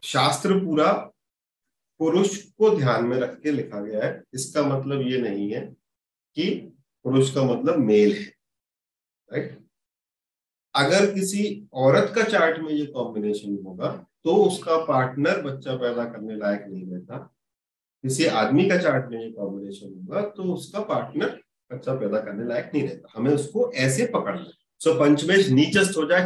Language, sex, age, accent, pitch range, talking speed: Hindi, male, 40-59, native, 120-160 Hz, 155 wpm